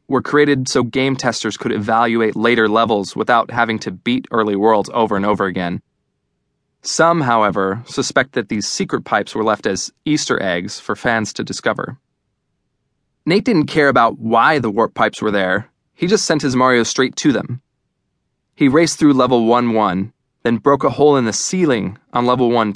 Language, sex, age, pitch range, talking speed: English, male, 20-39, 115-140 Hz, 180 wpm